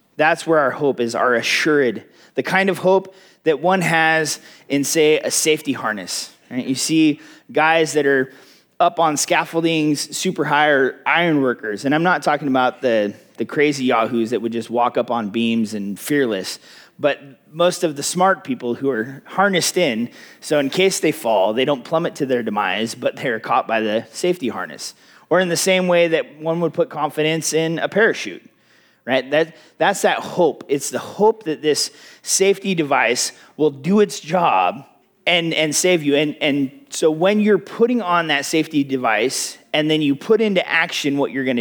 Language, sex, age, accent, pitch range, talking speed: English, male, 30-49, American, 135-175 Hz, 190 wpm